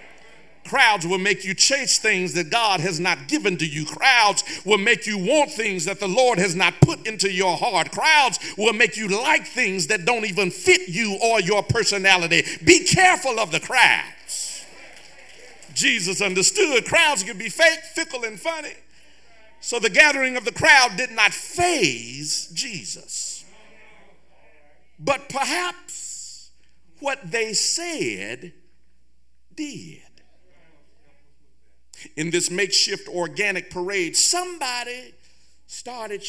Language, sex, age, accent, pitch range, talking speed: English, male, 50-69, American, 160-250 Hz, 130 wpm